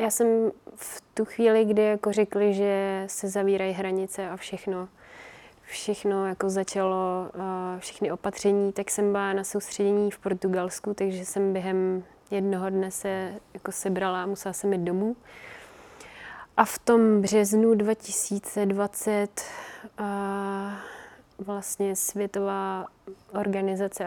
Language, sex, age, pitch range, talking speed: Czech, female, 20-39, 190-205 Hz, 120 wpm